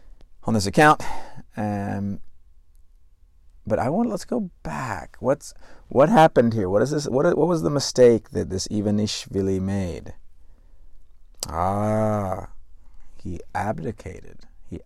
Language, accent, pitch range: English, American, 80-110 Hz